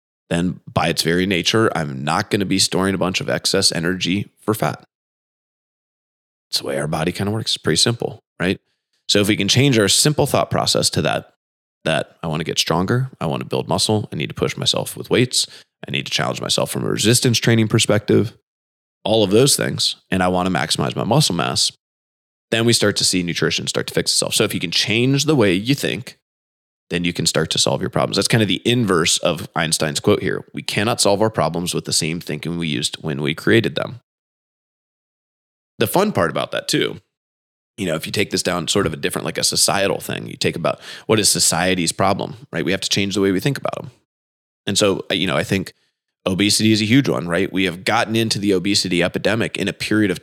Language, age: English, 20-39